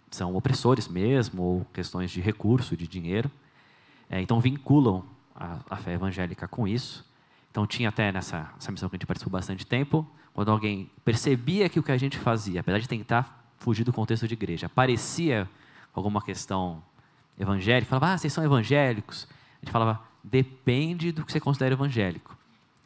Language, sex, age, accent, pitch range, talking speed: Portuguese, male, 20-39, Brazilian, 100-135 Hz, 170 wpm